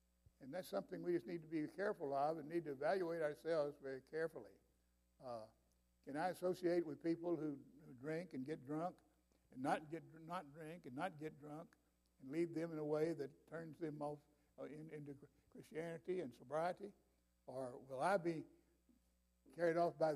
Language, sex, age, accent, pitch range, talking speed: English, male, 60-79, American, 135-170 Hz, 180 wpm